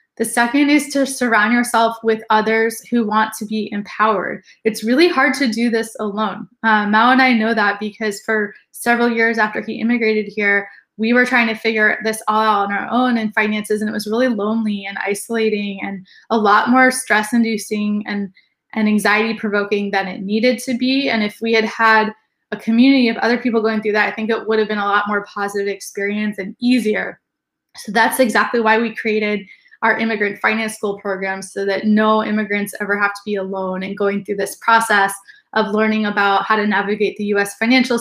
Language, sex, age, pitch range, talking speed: English, female, 10-29, 210-230 Hz, 200 wpm